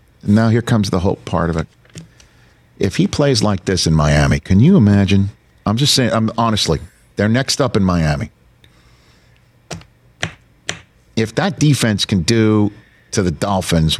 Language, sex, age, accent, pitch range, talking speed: English, male, 50-69, American, 90-125 Hz, 155 wpm